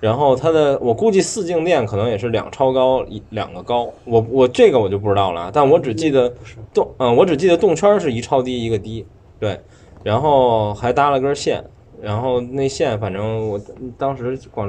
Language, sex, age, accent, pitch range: Chinese, male, 20-39, native, 100-125 Hz